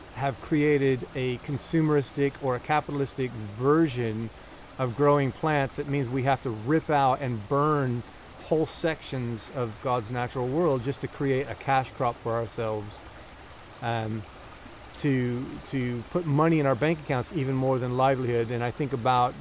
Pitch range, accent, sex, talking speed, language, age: 115-135 Hz, American, male, 160 wpm, English, 30-49